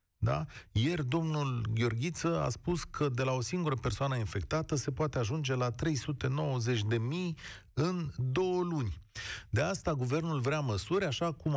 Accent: native